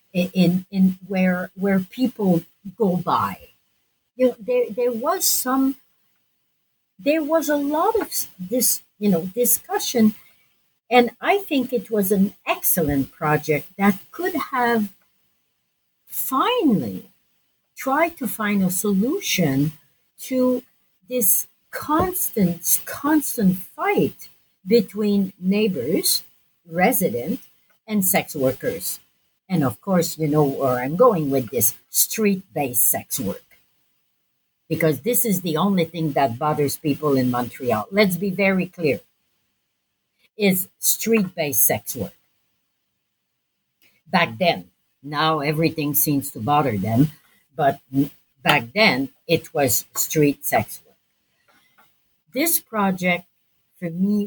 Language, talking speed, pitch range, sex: English, 115 wpm, 150-235 Hz, female